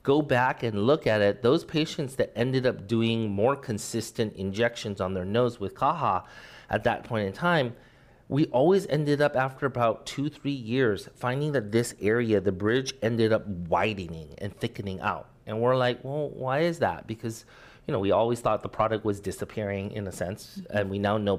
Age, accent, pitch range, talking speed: 30-49, American, 105-135 Hz, 195 wpm